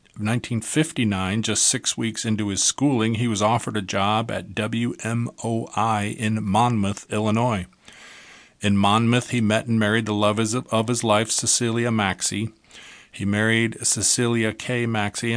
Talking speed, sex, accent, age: 135 wpm, male, American, 40-59